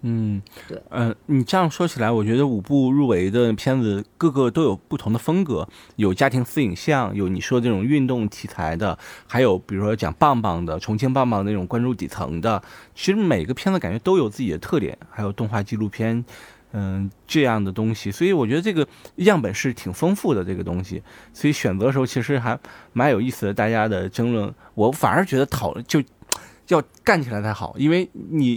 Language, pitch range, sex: Chinese, 105-140 Hz, male